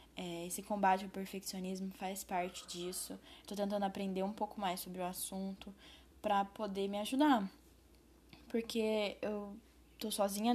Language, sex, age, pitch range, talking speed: Portuguese, female, 10-29, 185-215 Hz, 135 wpm